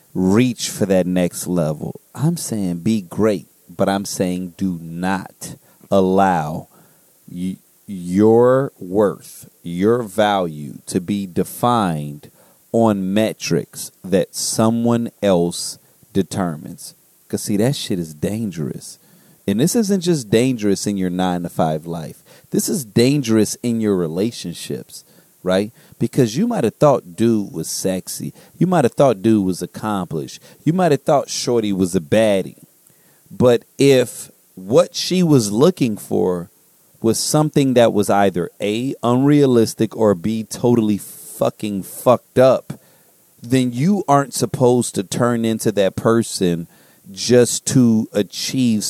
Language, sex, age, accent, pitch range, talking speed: English, male, 30-49, American, 95-125 Hz, 130 wpm